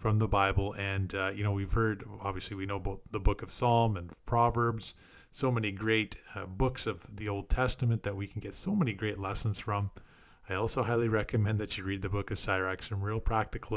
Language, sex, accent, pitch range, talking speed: English, male, American, 95-115 Hz, 220 wpm